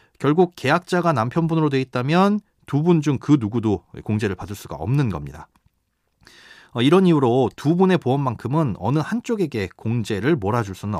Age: 40-59